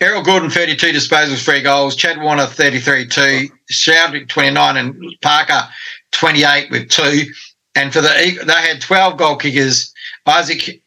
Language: English